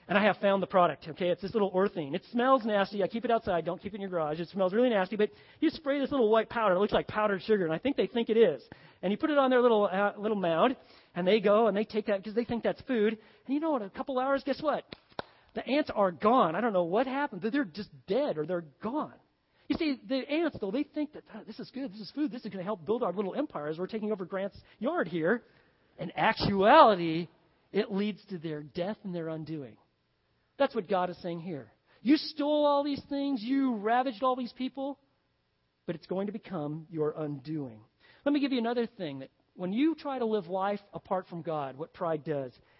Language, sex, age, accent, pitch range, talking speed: English, male, 40-59, American, 175-245 Hz, 245 wpm